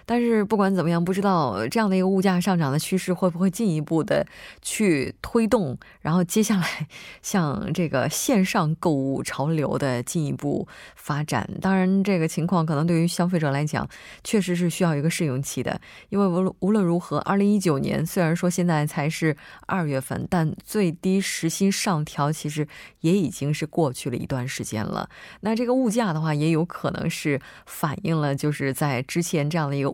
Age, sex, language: 20-39, female, Korean